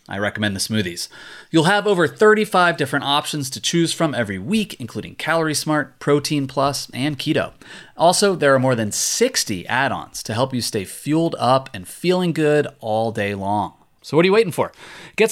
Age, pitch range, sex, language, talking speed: 30-49, 115-160 Hz, male, English, 190 wpm